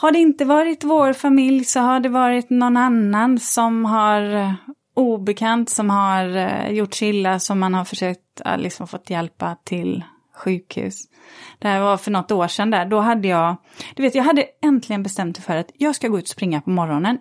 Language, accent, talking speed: Swedish, native, 195 wpm